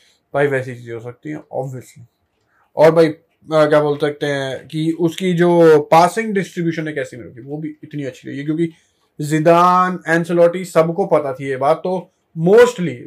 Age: 20-39